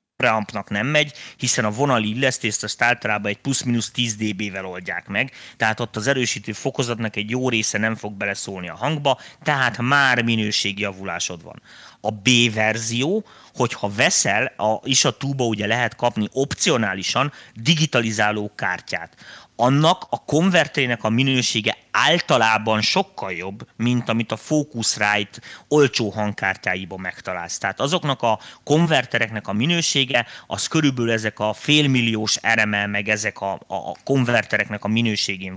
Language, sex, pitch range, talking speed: Hungarian, male, 105-135 Hz, 135 wpm